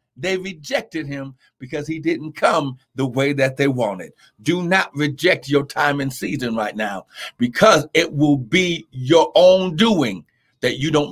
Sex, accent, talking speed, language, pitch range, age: male, American, 165 wpm, English, 140-205 Hz, 60-79